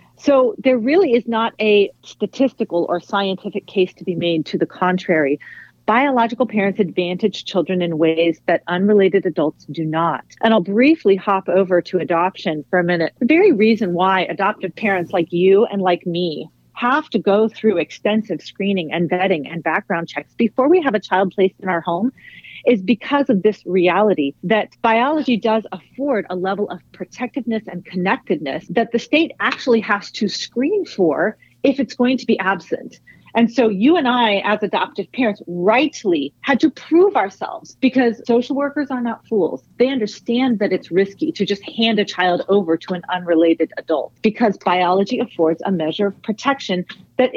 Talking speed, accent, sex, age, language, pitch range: 175 wpm, American, female, 40-59, English, 180-235 Hz